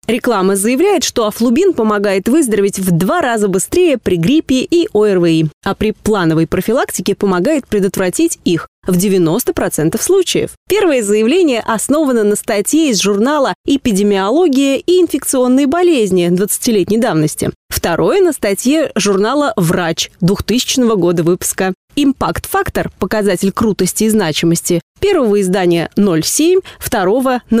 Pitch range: 185-265 Hz